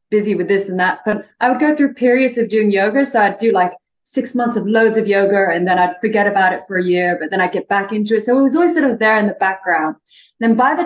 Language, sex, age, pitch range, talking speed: English, female, 30-49, 185-235 Hz, 295 wpm